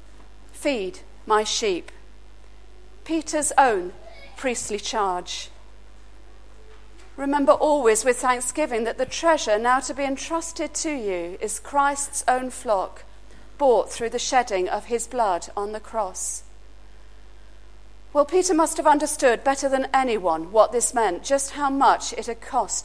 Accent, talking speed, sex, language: British, 135 wpm, female, English